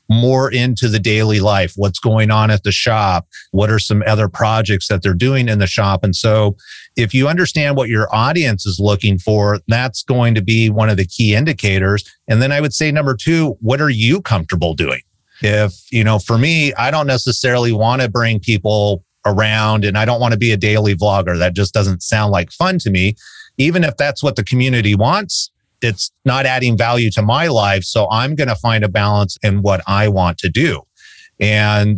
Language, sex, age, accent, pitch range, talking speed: English, male, 30-49, American, 105-125 Hz, 210 wpm